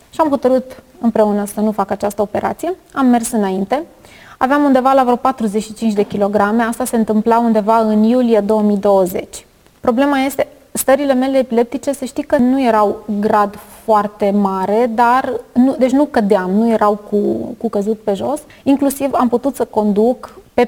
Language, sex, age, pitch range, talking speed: Romanian, female, 20-39, 205-250 Hz, 165 wpm